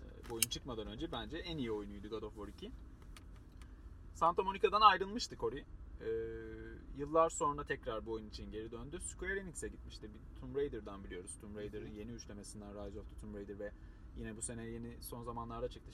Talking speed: 180 wpm